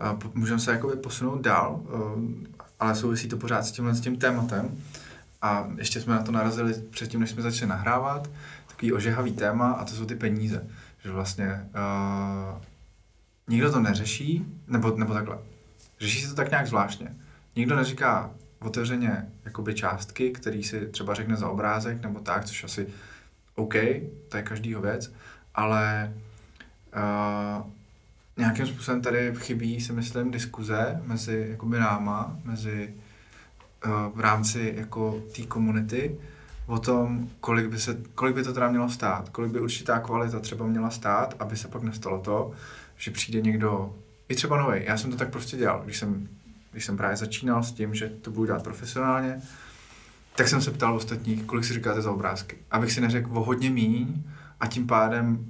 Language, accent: Czech, native